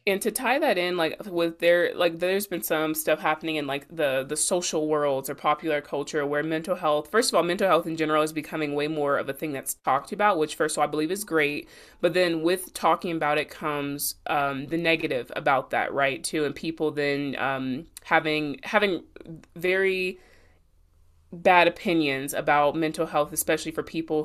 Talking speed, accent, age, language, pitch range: 200 wpm, American, 20-39, English, 145-170 Hz